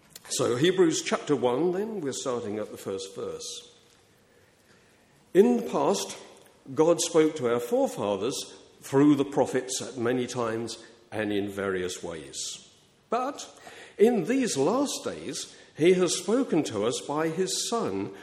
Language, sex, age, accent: English, male, 50-69, British